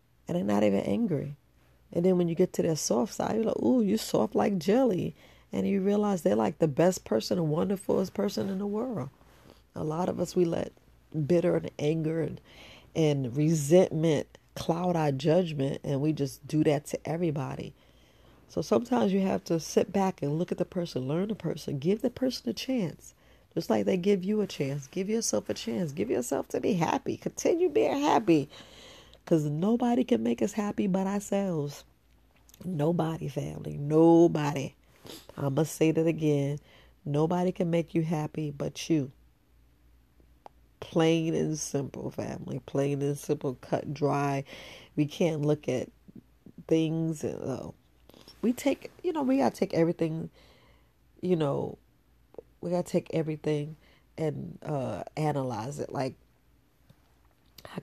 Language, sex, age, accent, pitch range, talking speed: English, female, 40-59, American, 145-185 Hz, 165 wpm